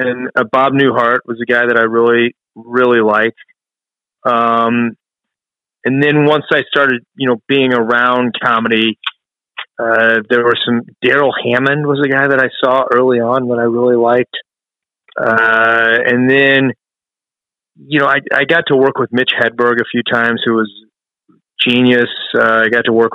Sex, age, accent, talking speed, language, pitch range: male, 30-49, American, 170 wpm, English, 115-135 Hz